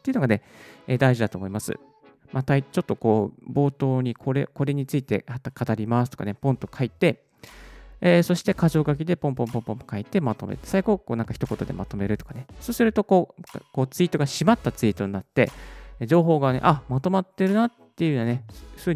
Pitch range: 110-165 Hz